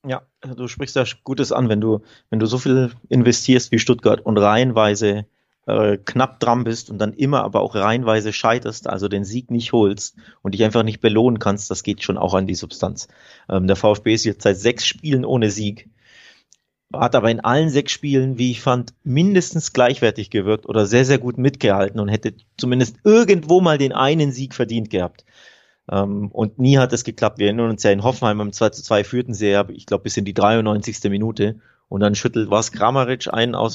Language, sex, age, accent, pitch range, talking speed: German, male, 30-49, German, 105-125 Hz, 210 wpm